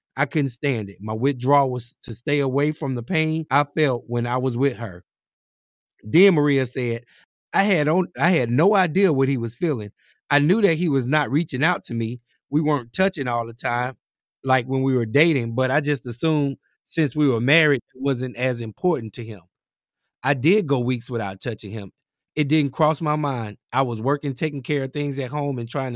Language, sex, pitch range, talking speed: English, male, 120-150 Hz, 210 wpm